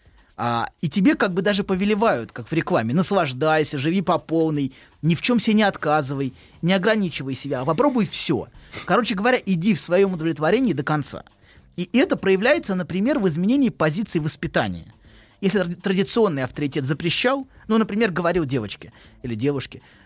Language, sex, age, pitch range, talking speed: Russian, male, 30-49, 130-200 Hz, 155 wpm